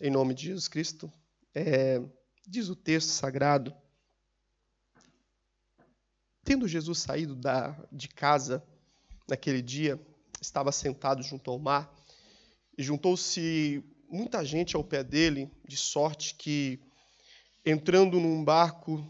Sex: male